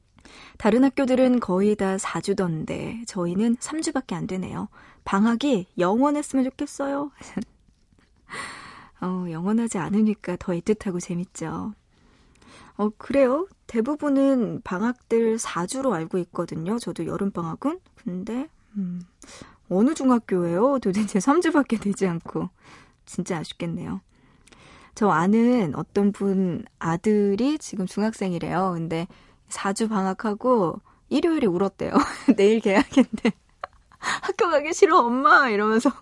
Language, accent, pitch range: Korean, native, 185-255 Hz